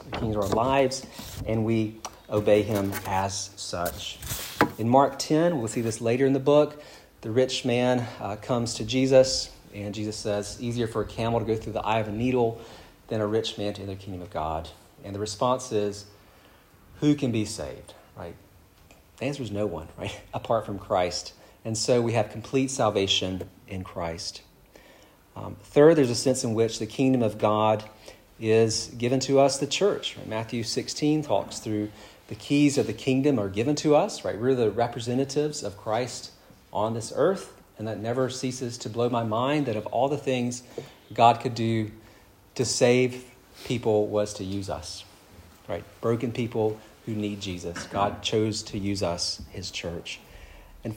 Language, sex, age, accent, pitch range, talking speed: English, male, 40-59, American, 100-125 Hz, 180 wpm